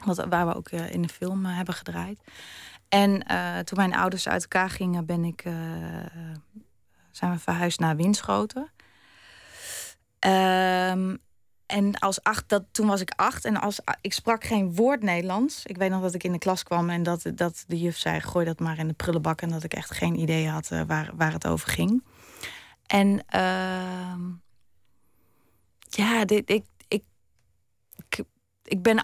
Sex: female